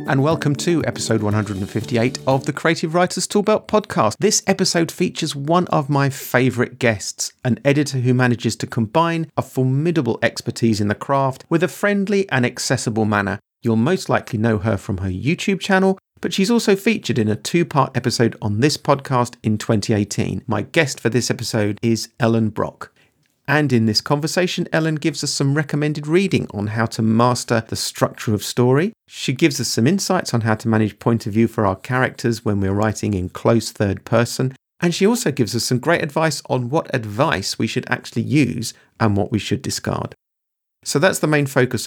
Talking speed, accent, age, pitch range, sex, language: 190 wpm, British, 40-59, 110-155 Hz, male, English